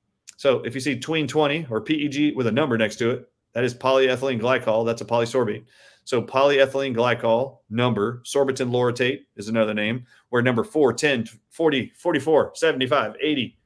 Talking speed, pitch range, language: 165 wpm, 110-135 Hz, English